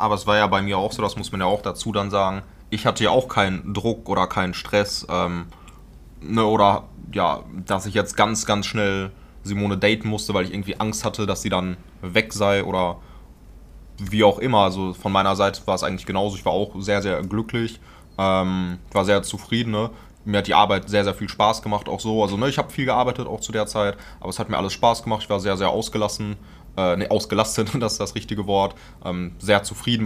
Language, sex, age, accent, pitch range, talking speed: German, male, 20-39, German, 95-105 Hz, 225 wpm